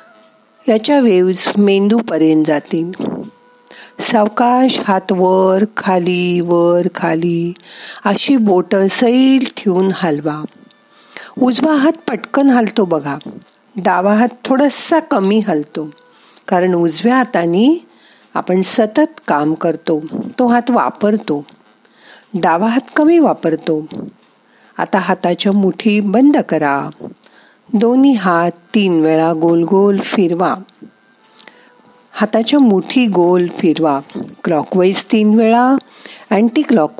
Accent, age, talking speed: native, 50-69, 85 wpm